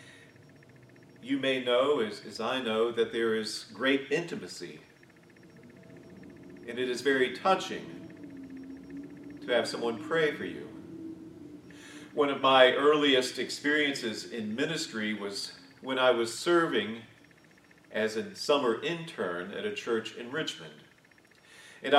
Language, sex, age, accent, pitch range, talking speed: English, male, 40-59, American, 115-155 Hz, 125 wpm